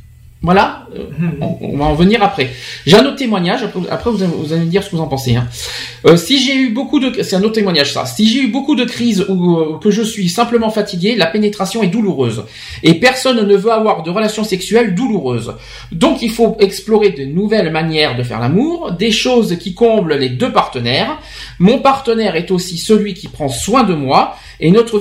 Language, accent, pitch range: French, French, 170-225 Hz